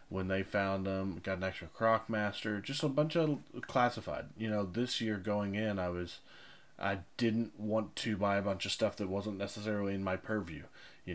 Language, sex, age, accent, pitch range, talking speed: English, male, 20-39, American, 95-115 Hz, 205 wpm